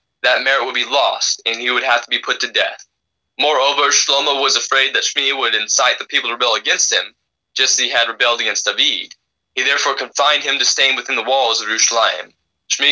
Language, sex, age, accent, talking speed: English, male, 20-39, American, 220 wpm